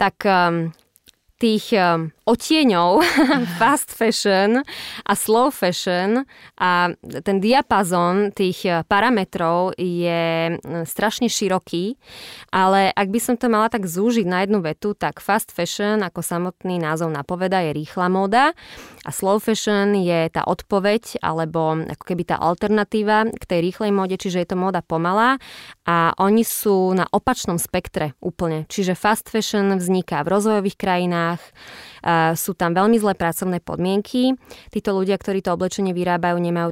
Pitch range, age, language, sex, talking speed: 175-205 Hz, 20-39, Slovak, female, 135 wpm